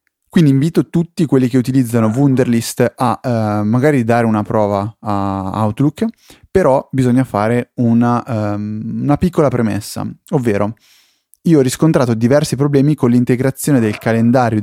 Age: 30-49